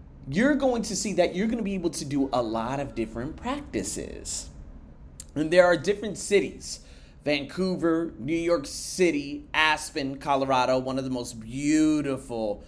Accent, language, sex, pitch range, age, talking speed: American, English, male, 115-185 Hz, 30-49, 155 wpm